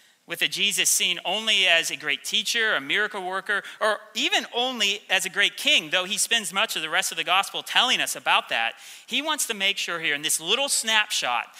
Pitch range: 155-215 Hz